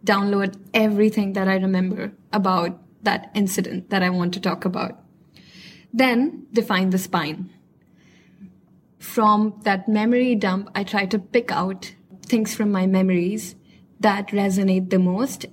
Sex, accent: female, Indian